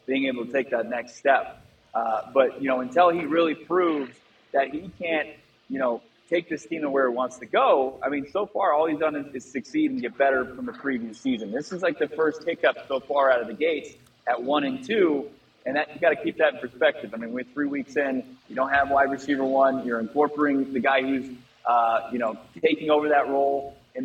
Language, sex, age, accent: English, male, 20-39, American